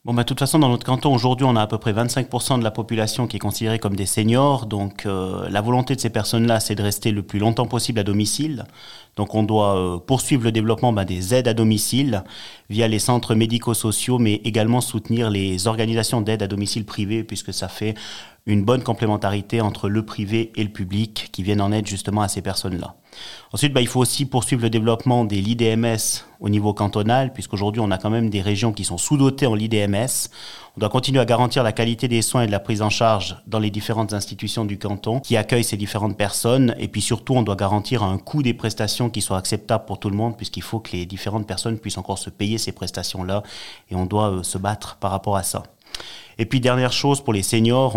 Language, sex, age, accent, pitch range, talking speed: French, male, 30-49, French, 105-120 Hz, 225 wpm